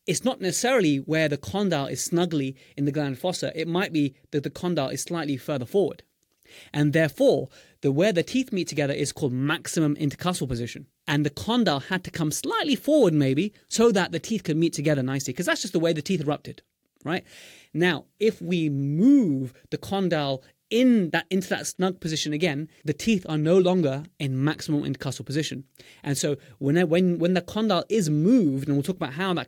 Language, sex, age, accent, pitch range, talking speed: English, male, 20-39, British, 145-180 Hz, 200 wpm